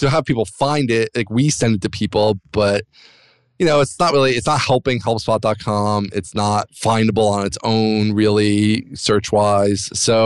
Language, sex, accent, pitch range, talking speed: English, male, American, 100-120 Hz, 180 wpm